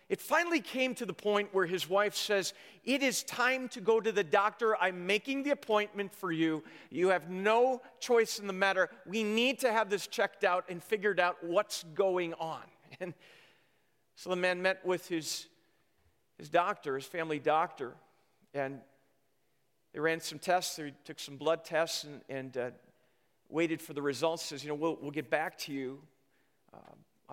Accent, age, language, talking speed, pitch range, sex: American, 50-69, English, 180 wpm, 150-195 Hz, male